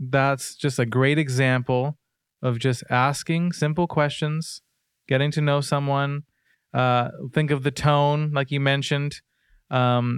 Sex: male